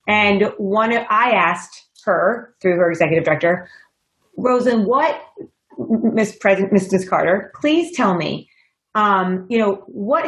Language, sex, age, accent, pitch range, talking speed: English, female, 30-49, American, 195-250 Hz, 130 wpm